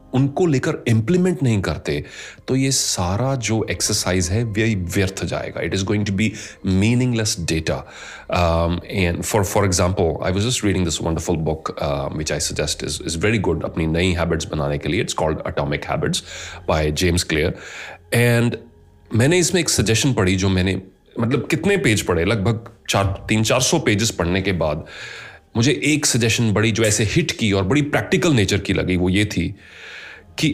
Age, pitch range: 30-49, 90-125 Hz